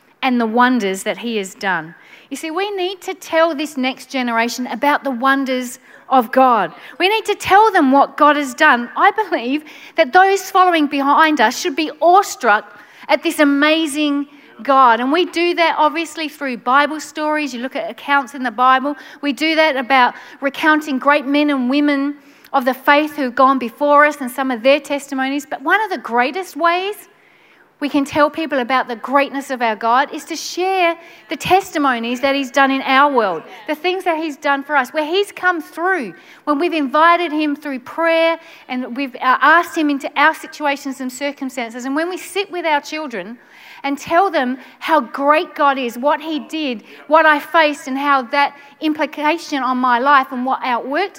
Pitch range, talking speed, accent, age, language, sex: 265-320 Hz, 190 wpm, Australian, 40-59, English, female